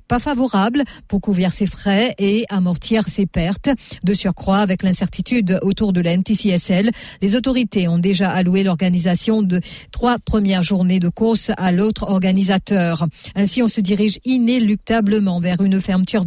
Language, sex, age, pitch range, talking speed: English, female, 50-69, 180-210 Hz, 150 wpm